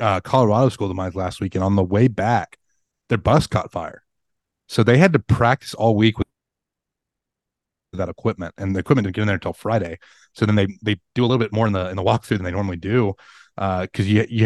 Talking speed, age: 235 wpm, 30-49